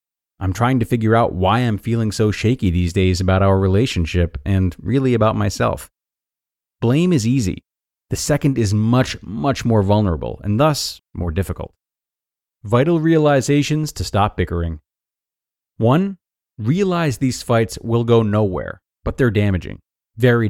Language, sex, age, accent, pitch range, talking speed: English, male, 30-49, American, 95-130 Hz, 145 wpm